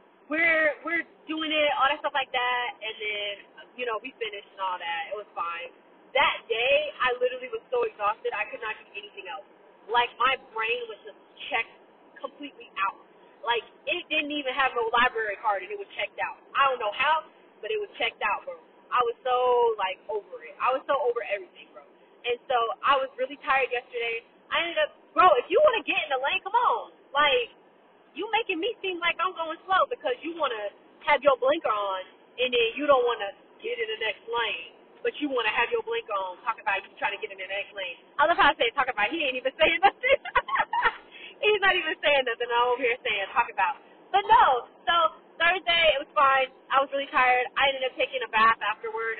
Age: 20-39